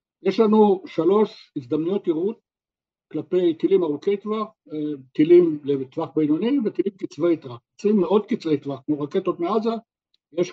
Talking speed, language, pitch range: 125 wpm, Hebrew, 145-185 Hz